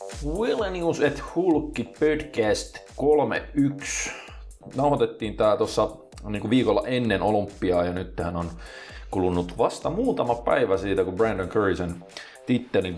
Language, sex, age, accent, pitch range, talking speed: Finnish, male, 30-49, native, 95-130 Hz, 125 wpm